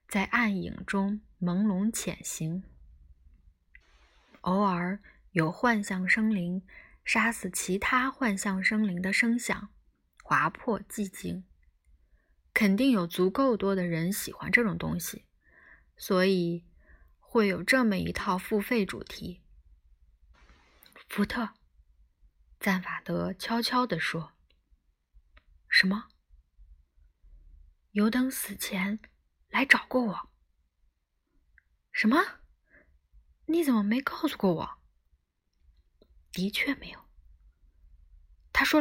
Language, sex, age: Chinese, female, 20-39